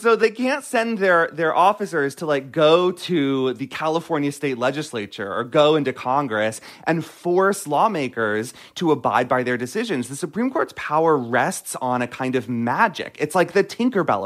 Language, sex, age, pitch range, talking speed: English, male, 30-49, 135-200 Hz, 175 wpm